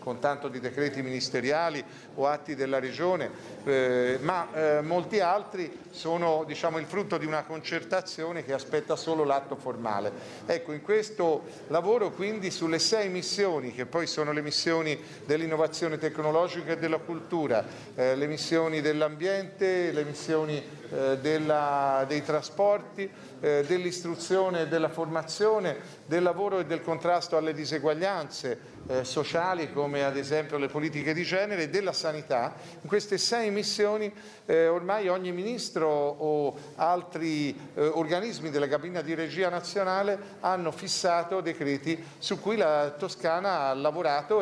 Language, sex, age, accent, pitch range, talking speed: Italian, male, 50-69, native, 150-185 Hz, 140 wpm